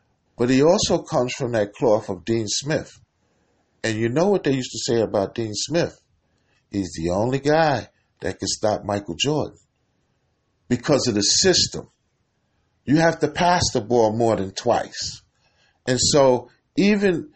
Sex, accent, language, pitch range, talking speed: male, American, English, 115-165 Hz, 160 wpm